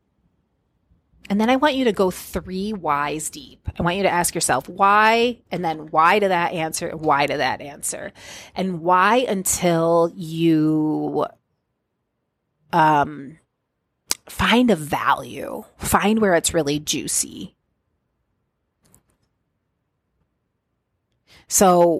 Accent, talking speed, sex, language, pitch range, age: American, 110 wpm, female, English, 155-190 Hz, 30-49